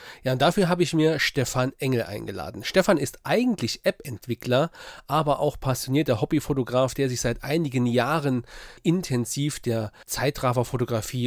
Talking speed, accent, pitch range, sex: 135 wpm, German, 120-145 Hz, male